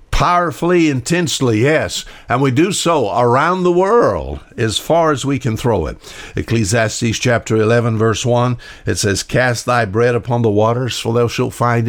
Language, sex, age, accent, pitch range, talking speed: English, male, 60-79, American, 110-140 Hz, 170 wpm